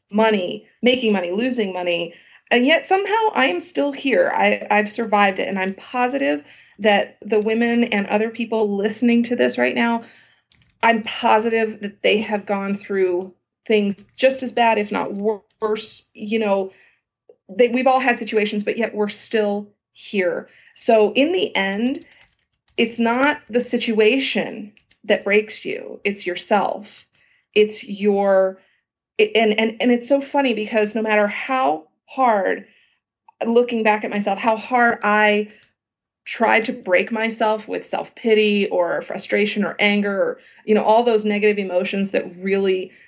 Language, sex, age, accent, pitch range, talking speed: English, female, 30-49, American, 200-240 Hz, 150 wpm